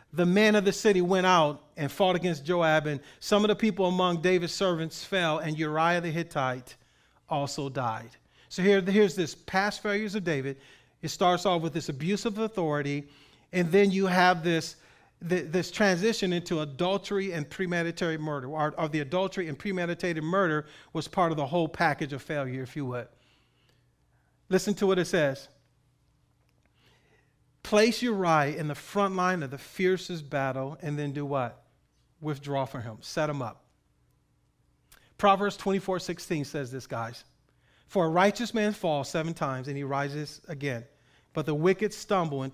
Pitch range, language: 145-190 Hz, English